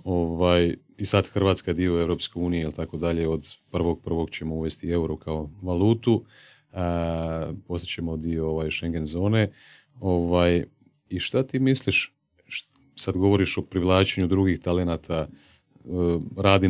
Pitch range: 80-100 Hz